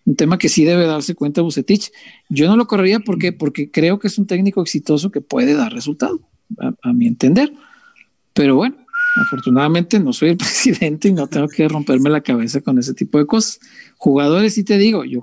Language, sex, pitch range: Spanish, male, 150-205 Hz